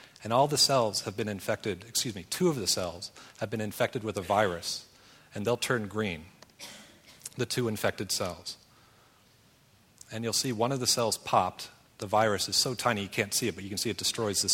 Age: 40-59